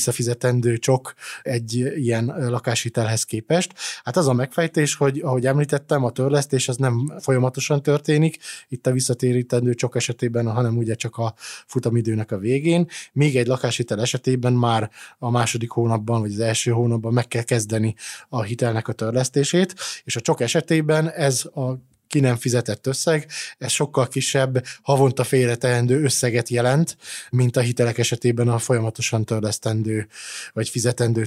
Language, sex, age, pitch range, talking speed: Hungarian, male, 20-39, 120-135 Hz, 145 wpm